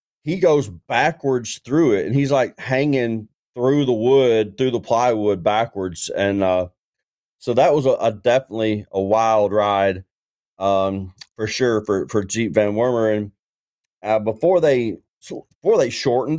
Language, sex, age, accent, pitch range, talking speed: English, male, 30-49, American, 105-130 Hz, 155 wpm